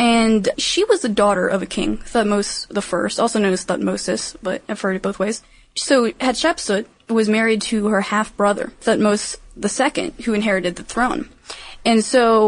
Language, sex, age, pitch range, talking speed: English, female, 20-39, 200-245 Hz, 170 wpm